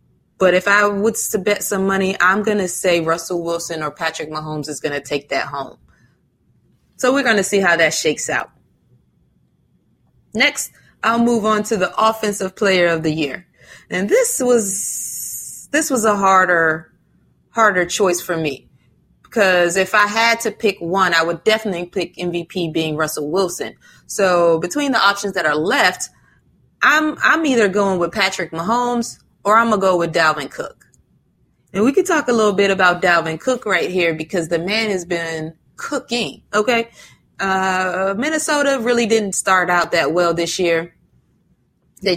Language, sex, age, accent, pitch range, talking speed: English, female, 20-39, American, 170-215 Hz, 170 wpm